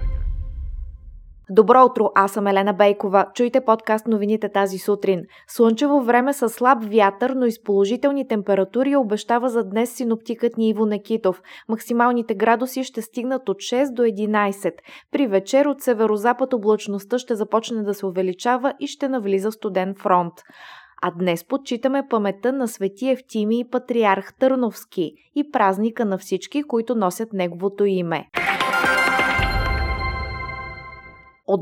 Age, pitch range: 20-39, 195-250 Hz